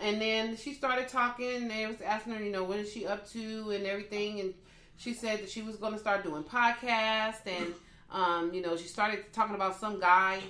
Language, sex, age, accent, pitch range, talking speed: English, female, 30-49, American, 190-245 Hz, 230 wpm